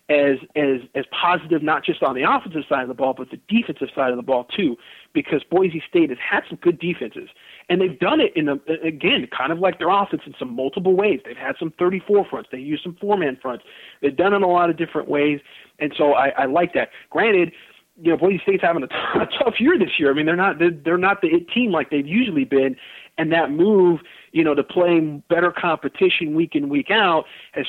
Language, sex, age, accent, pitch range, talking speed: English, male, 40-59, American, 140-180 Hz, 240 wpm